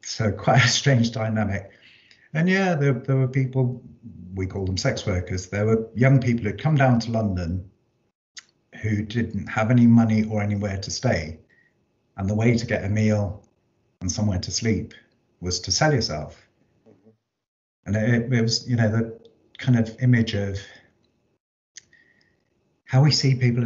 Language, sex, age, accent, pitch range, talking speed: English, male, 50-69, British, 95-120 Hz, 160 wpm